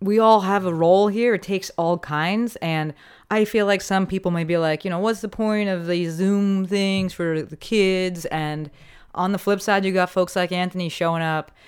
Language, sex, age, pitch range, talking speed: English, female, 30-49, 155-200 Hz, 220 wpm